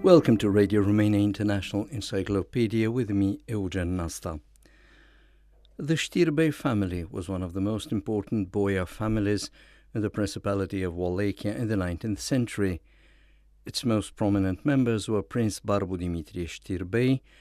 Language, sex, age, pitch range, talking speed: English, male, 60-79, 95-120 Hz, 135 wpm